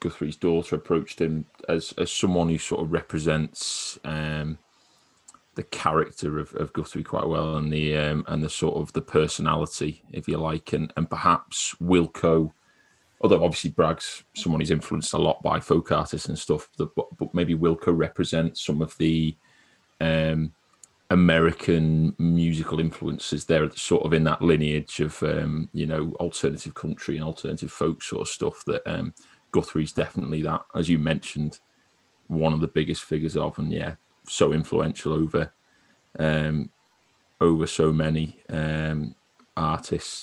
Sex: male